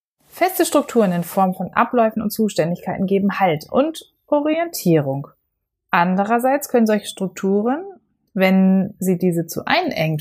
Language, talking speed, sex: German, 125 wpm, female